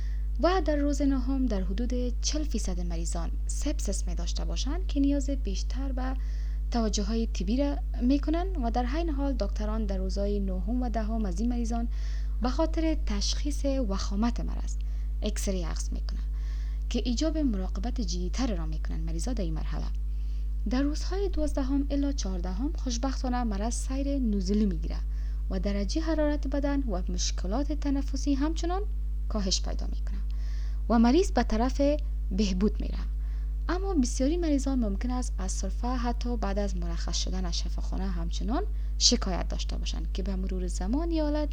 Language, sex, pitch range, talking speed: Persian, female, 185-275 Hz, 155 wpm